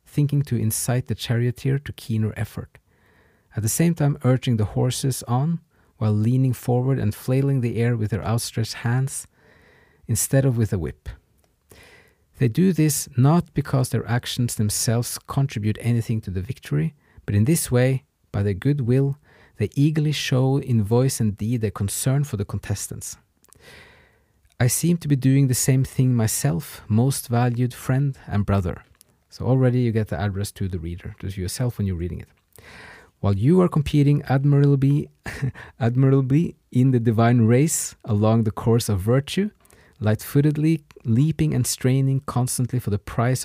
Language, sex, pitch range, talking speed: English, male, 105-135 Hz, 160 wpm